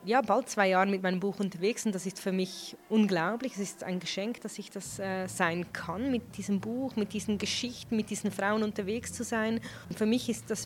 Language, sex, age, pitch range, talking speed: German, female, 20-39, 205-240 Hz, 230 wpm